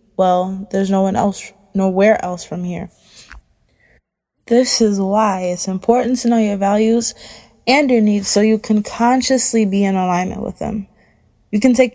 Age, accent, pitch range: 20-39, American, 180-220 Hz